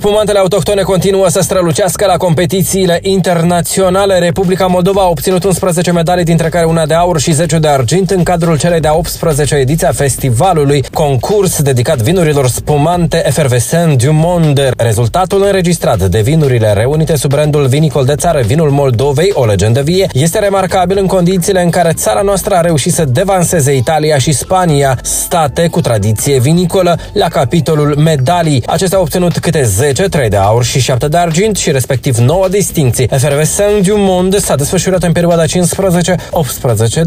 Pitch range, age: 140-180 Hz, 20-39